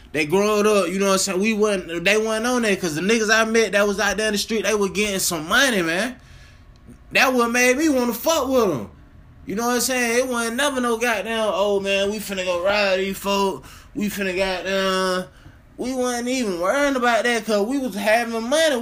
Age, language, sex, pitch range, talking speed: 20-39, English, male, 185-240 Hz, 240 wpm